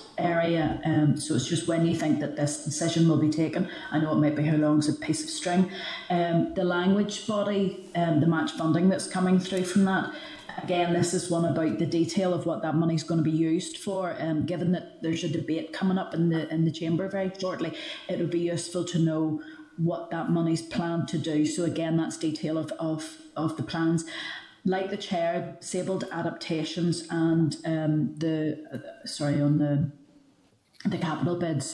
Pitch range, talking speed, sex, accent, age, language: 155-175 Hz, 200 wpm, female, British, 30-49, English